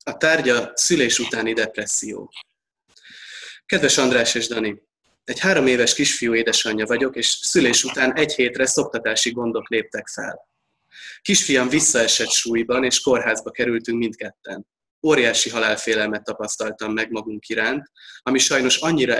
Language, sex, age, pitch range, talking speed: Hungarian, male, 20-39, 110-130 Hz, 125 wpm